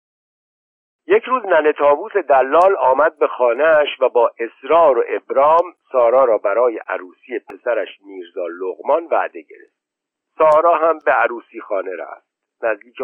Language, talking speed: Persian, 135 wpm